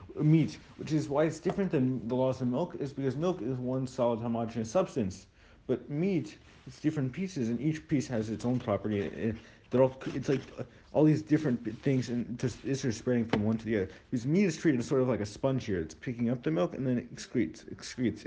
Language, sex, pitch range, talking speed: English, male, 110-140 Hz, 225 wpm